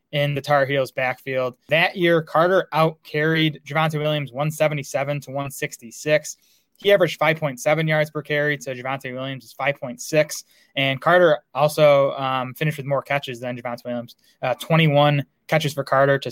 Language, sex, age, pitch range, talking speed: English, male, 20-39, 135-150 Hz, 170 wpm